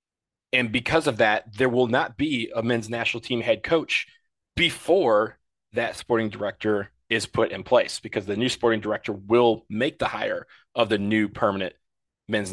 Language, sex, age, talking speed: English, male, 30-49, 170 wpm